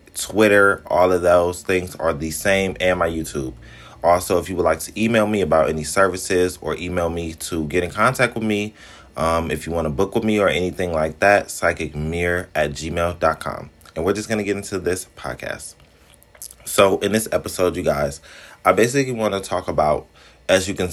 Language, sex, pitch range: English, male, 80-95 Hz